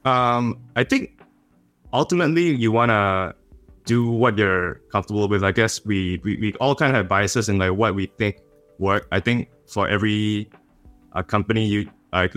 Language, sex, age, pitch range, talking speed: English, male, 20-39, 100-115 Hz, 170 wpm